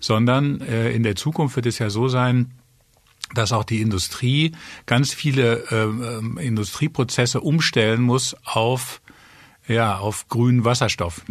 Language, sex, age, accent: German, male, 50-69, German